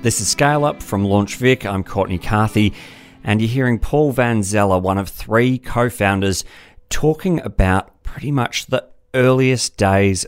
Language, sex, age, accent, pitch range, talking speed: English, male, 40-59, Australian, 95-120 Hz, 160 wpm